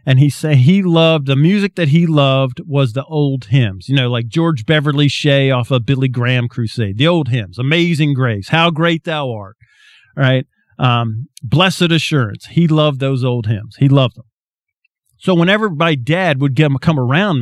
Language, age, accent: English, 40-59, American